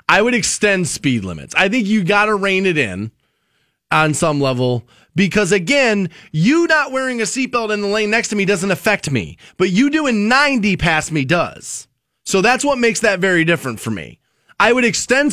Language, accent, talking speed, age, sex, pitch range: English, American, 200 wpm, 30-49, male, 160-245 Hz